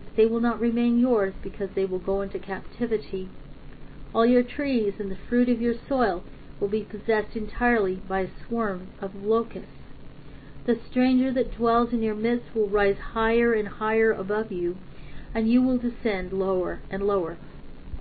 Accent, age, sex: American, 40-59, female